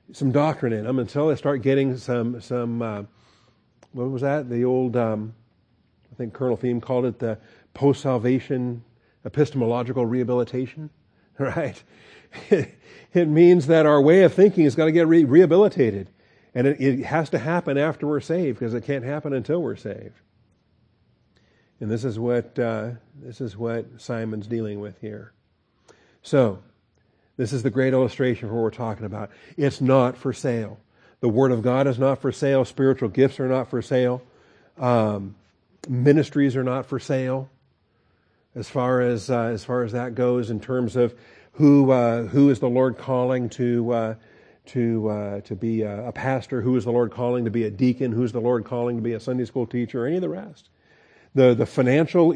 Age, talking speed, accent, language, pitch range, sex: 50-69, 185 wpm, American, English, 115-135 Hz, male